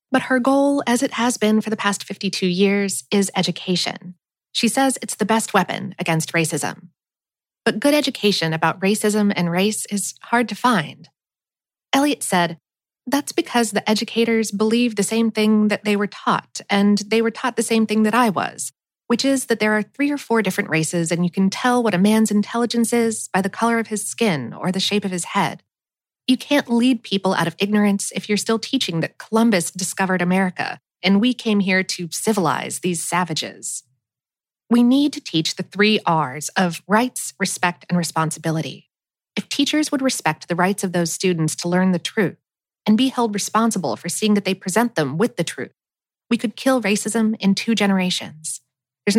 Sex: female